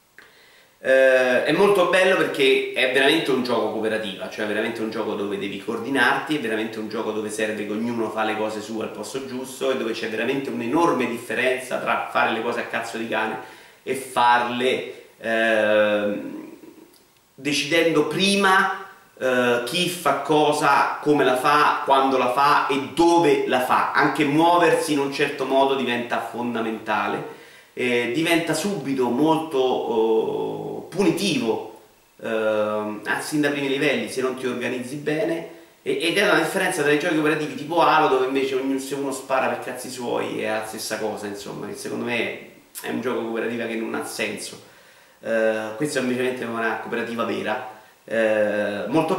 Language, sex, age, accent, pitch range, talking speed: Italian, male, 30-49, native, 110-150 Hz, 165 wpm